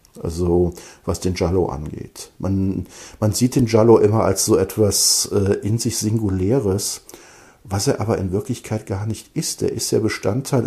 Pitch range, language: 95-115 Hz, German